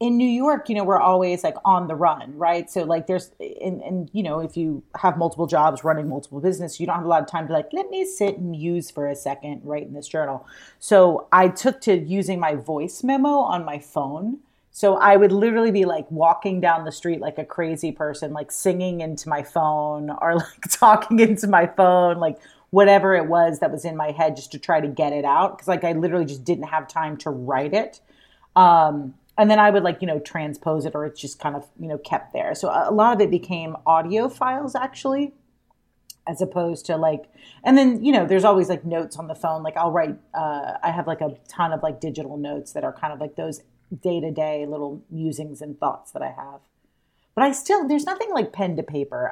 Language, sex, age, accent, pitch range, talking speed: English, female, 30-49, American, 155-195 Hz, 235 wpm